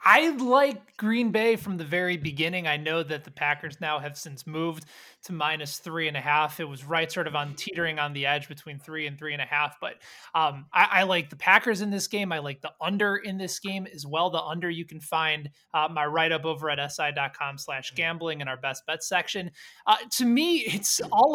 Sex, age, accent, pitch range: male, 20-39, American, 155-210 Hz